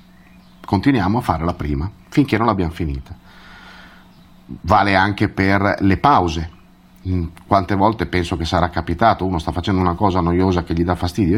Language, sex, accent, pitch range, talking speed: Italian, male, native, 85-110 Hz, 160 wpm